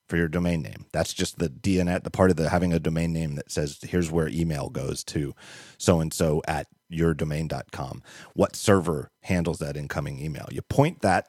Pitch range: 80-95 Hz